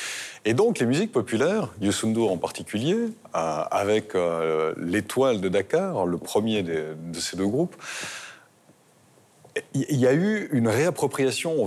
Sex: male